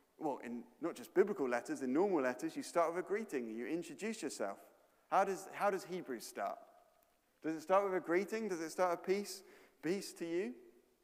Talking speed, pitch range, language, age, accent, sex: 200 wpm, 135-200 Hz, English, 30-49, British, male